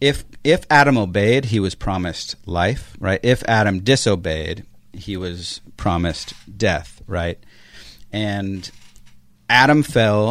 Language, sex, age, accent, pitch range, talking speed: English, male, 40-59, American, 95-115 Hz, 115 wpm